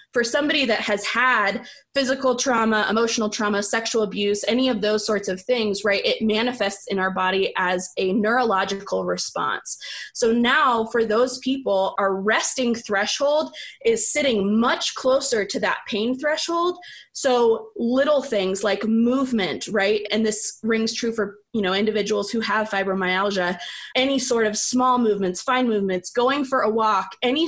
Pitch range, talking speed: 205-250 Hz, 155 wpm